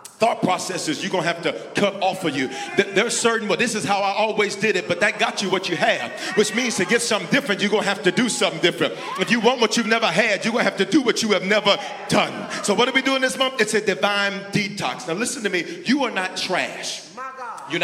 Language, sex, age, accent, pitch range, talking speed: English, male, 40-59, American, 185-255 Hz, 275 wpm